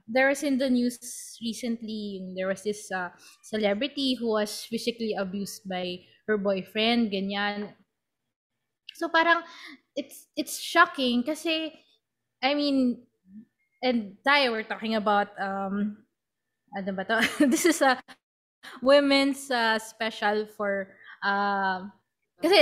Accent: Filipino